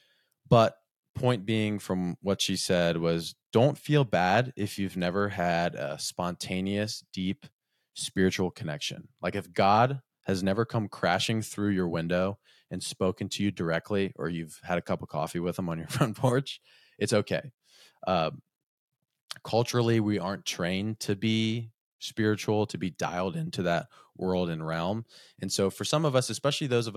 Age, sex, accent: 20-39, male, American